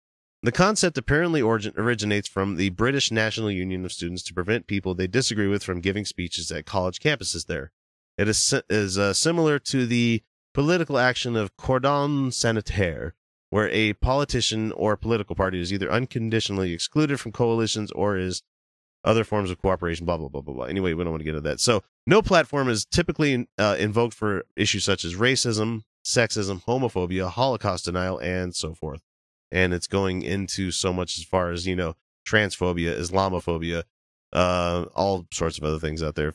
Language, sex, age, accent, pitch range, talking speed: English, male, 30-49, American, 85-110 Hz, 175 wpm